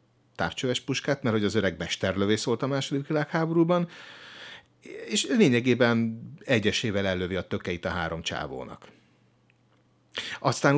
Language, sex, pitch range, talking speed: Hungarian, male, 95-125 Hz, 110 wpm